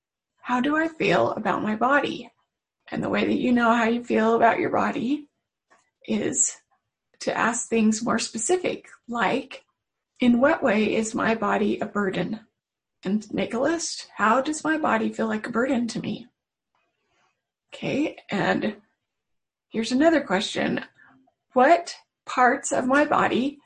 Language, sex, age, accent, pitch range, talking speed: English, female, 30-49, American, 220-270 Hz, 145 wpm